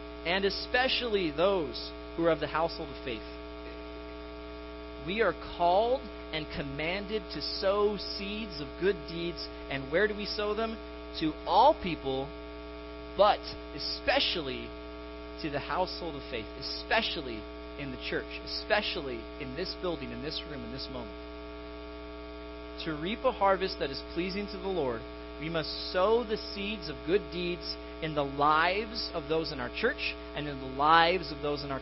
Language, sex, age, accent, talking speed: English, male, 30-49, American, 160 wpm